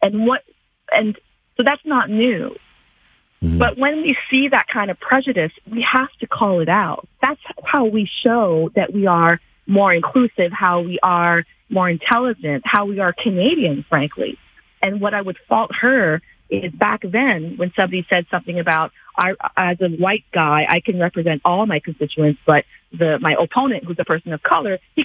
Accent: American